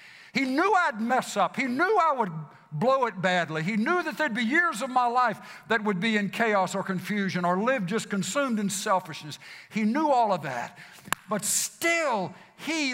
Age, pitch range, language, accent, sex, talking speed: 60-79, 200-275 Hz, English, American, male, 195 wpm